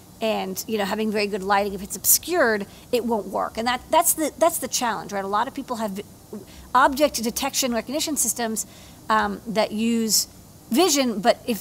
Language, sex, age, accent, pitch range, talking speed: English, female, 40-59, American, 205-255 Hz, 185 wpm